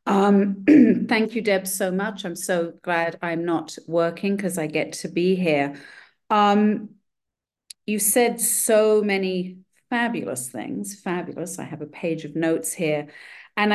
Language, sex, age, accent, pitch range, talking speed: English, female, 40-59, British, 165-200 Hz, 150 wpm